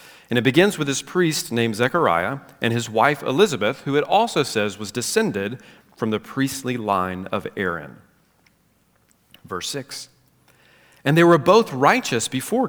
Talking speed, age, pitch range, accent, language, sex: 150 wpm, 40-59, 110-145 Hz, American, English, male